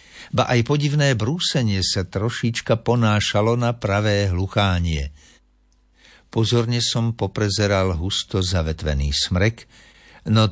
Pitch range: 90-125 Hz